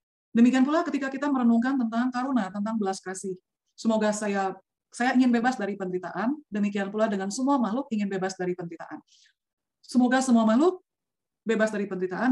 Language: Indonesian